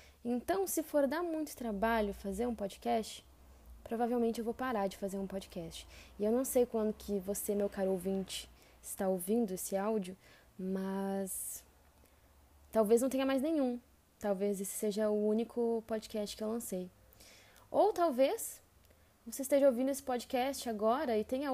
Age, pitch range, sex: 10-29, 200-255 Hz, female